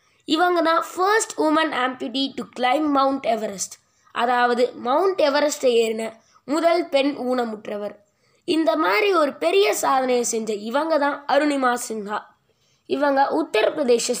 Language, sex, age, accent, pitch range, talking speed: Tamil, female, 20-39, native, 230-310 Hz, 120 wpm